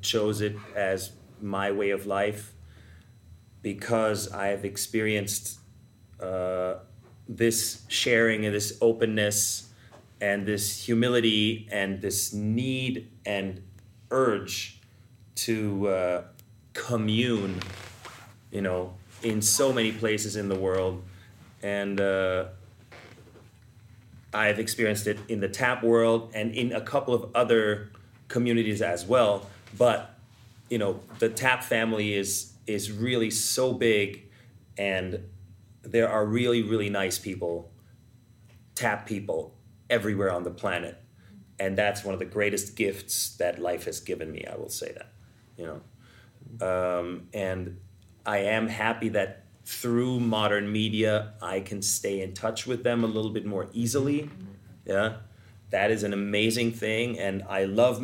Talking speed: 130 wpm